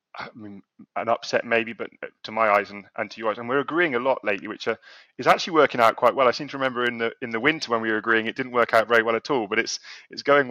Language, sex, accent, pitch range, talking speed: English, male, British, 100-115 Hz, 285 wpm